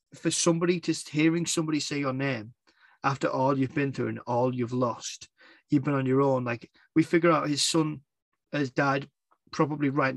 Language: English